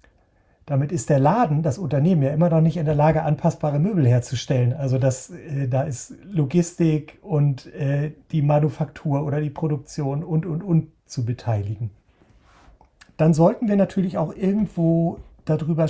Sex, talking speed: male, 145 wpm